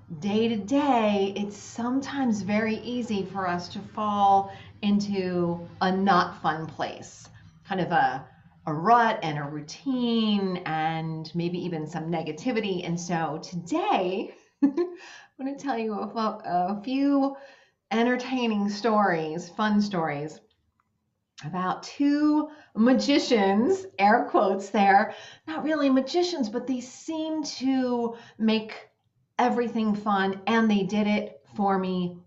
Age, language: 30-49, English